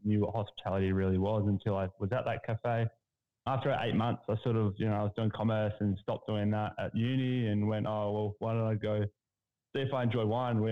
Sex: male